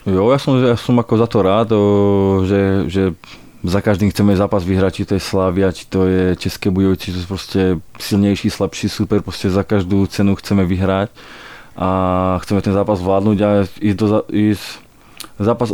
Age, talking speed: 20-39, 170 wpm